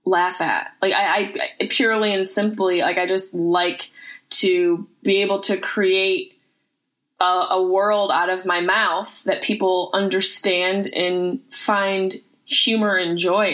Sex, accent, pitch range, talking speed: female, American, 190-270 Hz, 140 wpm